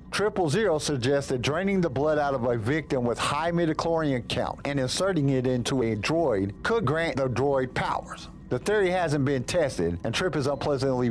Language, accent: English, American